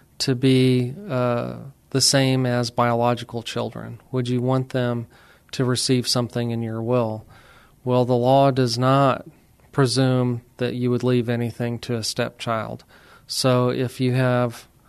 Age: 40-59